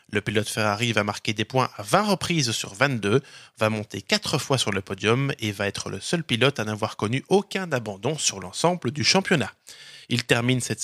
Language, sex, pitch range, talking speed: French, male, 110-150 Hz, 205 wpm